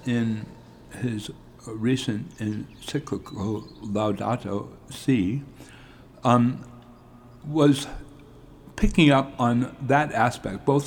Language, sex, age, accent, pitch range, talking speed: English, male, 60-79, American, 105-140 Hz, 75 wpm